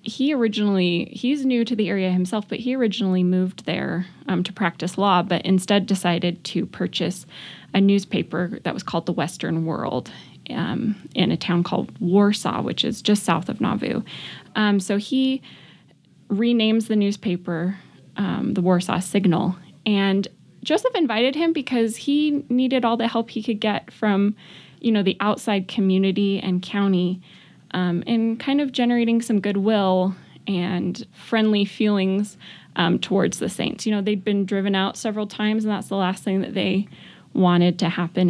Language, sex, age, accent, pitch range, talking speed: English, female, 10-29, American, 185-220 Hz, 165 wpm